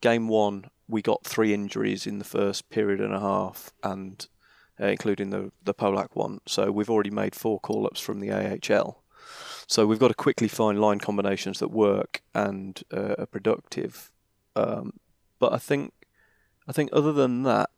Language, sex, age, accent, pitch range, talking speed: English, male, 30-49, British, 100-125 Hz, 175 wpm